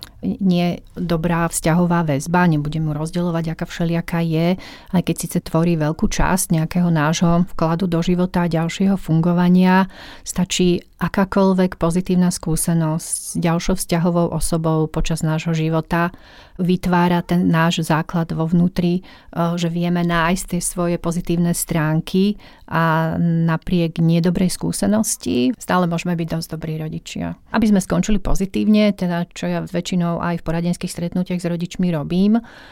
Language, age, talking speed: Slovak, 40-59, 130 wpm